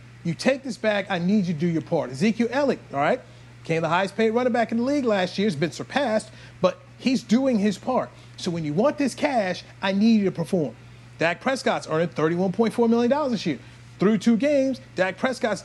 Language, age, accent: English, 40-59, American